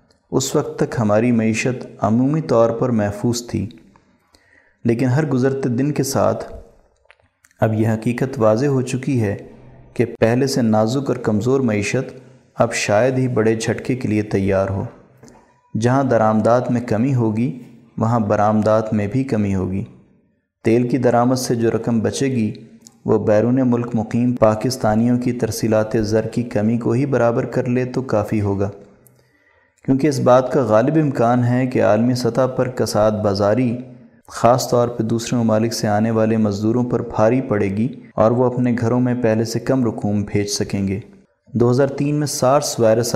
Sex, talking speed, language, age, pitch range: male, 165 wpm, Urdu, 30-49, 110-130 Hz